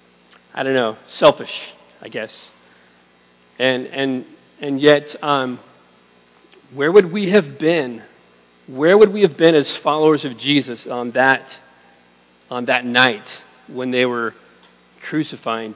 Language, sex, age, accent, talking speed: English, male, 50-69, American, 130 wpm